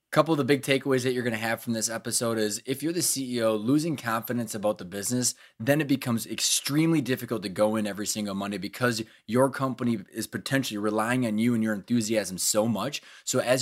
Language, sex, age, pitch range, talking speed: English, male, 20-39, 110-135 Hz, 215 wpm